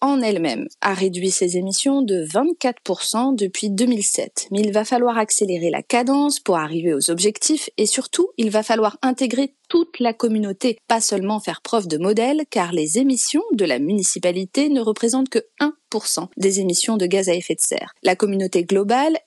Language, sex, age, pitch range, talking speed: French, female, 30-49, 185-265 Hz, 180 wpm